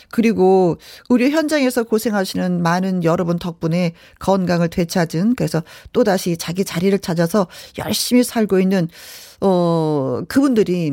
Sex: female